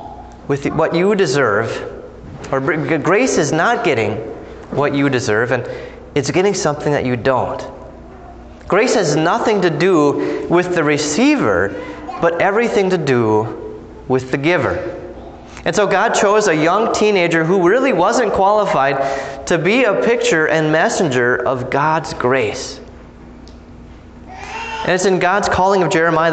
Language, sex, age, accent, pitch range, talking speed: English, male, 30-49, American, 150-200 Hz, 140 wpm